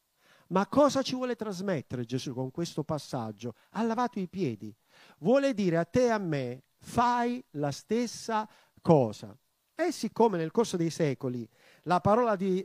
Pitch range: 155-225 Hz